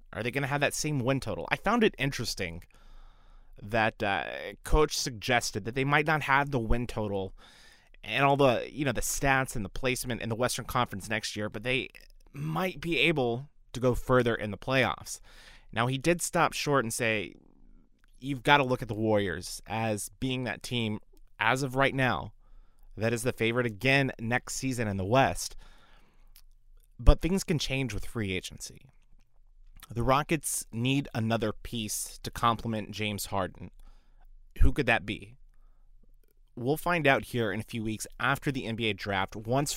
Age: 30-49